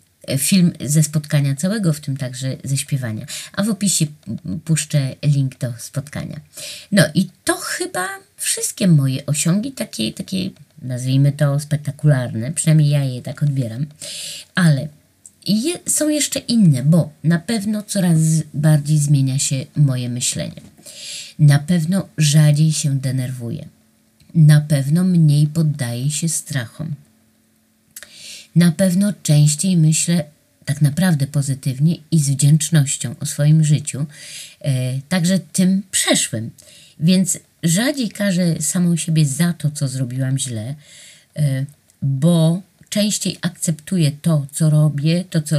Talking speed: 120 wpm